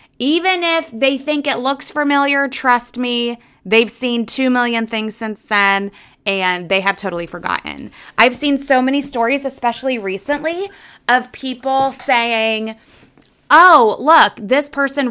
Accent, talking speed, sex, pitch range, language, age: American, 140 wpm, female, 200-270 Hz, English, 20-39